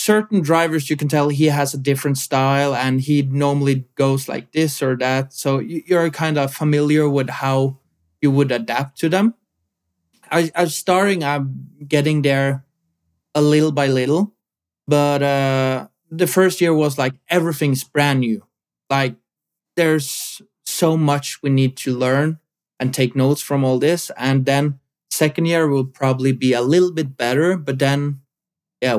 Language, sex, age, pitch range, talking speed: English, male, 20-39, 130-155 Hz, 160 wpm